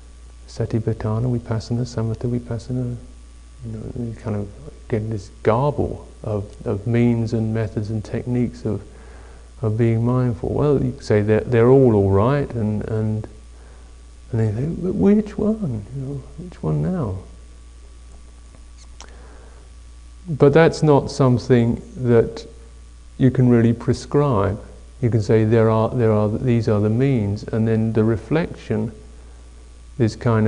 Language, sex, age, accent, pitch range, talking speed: English, male, 50-69, British, 95-120 Hz, 145 wpm